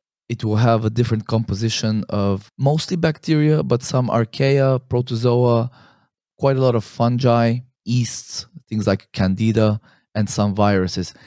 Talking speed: 135 wpm